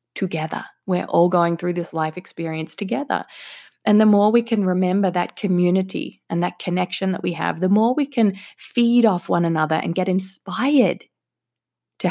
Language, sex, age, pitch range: English, female, 20-39, 170-205 Hz